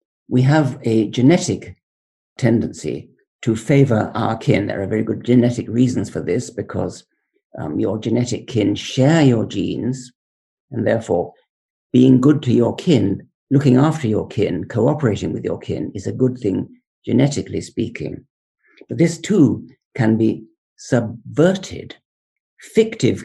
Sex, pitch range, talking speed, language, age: male, 110-135 Hz, 135 wpm, English, 50-69